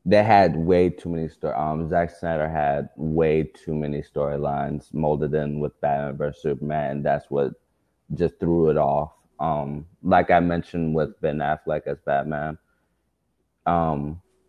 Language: English